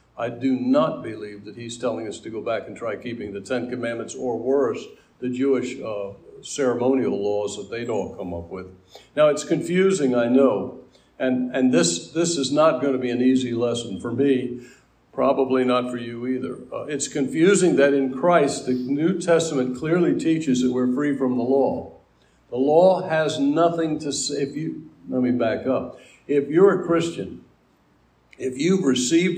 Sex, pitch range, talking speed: male, 125-160 Hz, 185 wpm